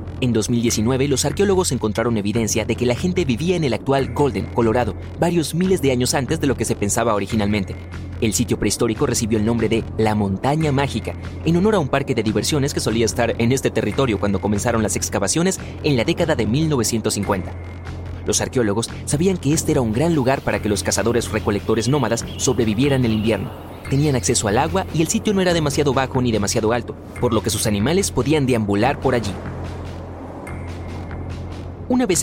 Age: 30-49